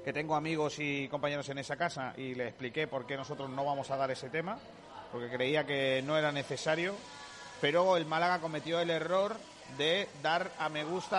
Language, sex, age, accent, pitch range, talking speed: Spanish, male, 40-59, Spanish, 145-175 Hz, 200 wpm